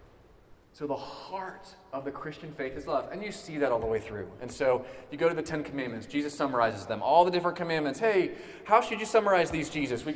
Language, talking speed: English, 235 wpm